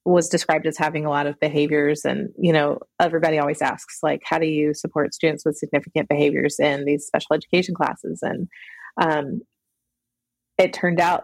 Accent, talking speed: American, 175 wpm